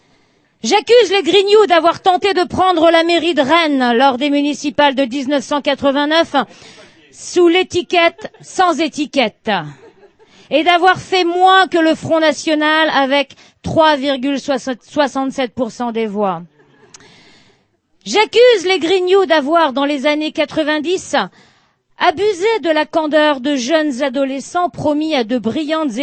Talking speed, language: 120 wpm, French